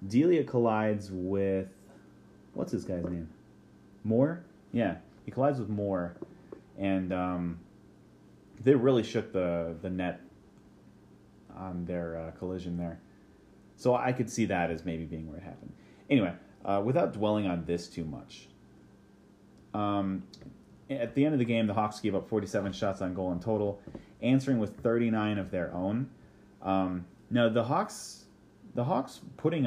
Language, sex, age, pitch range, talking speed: English, male, 30-49, 90-110 Hz, 150 wpm